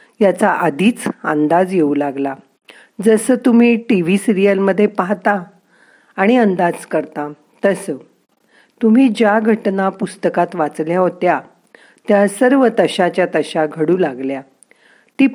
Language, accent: Marathi, native